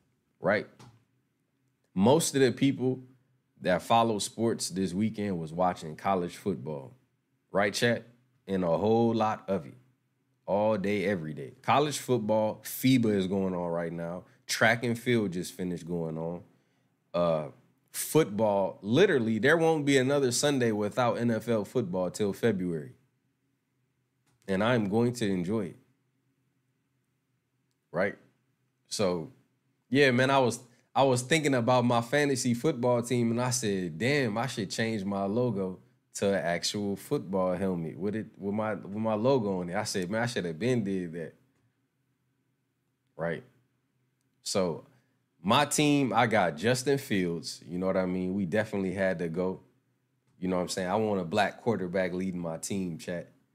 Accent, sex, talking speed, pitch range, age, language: American, male, 155 wpm, 100-130 Hz, 20-39, English